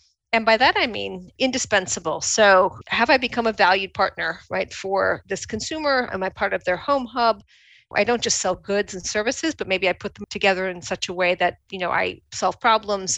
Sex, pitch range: female, 185-210 Hz